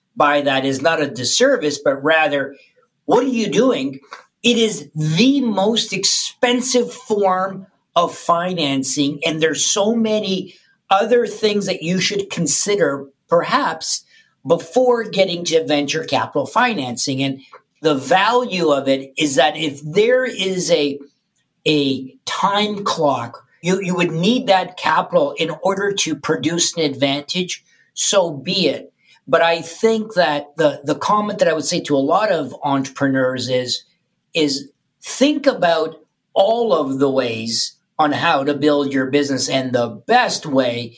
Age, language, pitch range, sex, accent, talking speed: 50-69, English, 140-195 Hz, male, American, 145 wpm